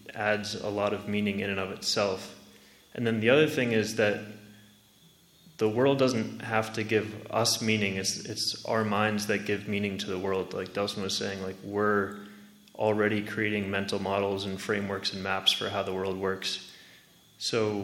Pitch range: 100-110 Hz